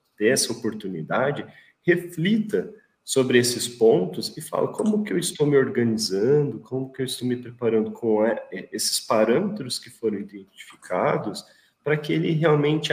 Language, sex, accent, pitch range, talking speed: Portuguese, male, Brazilian, 125-170 Hz, 150 wpm